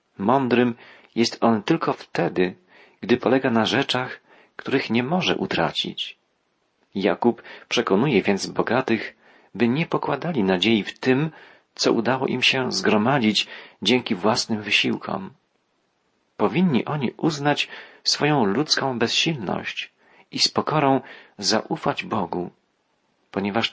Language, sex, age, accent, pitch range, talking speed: Polish, male, 40-59, native, 105-135 Hz, 110 wpm